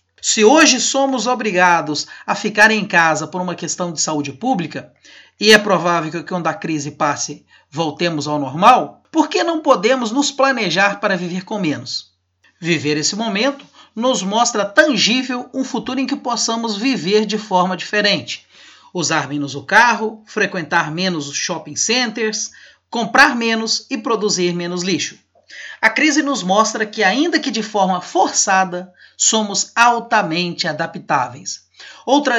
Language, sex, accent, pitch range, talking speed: Portuguese, male, Brazilian, 170-240 Hz, 145 wpm